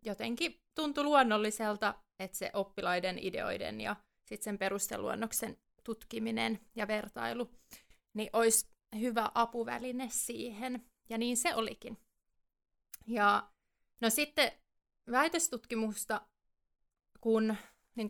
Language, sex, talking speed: Finnish, female, 95 wpm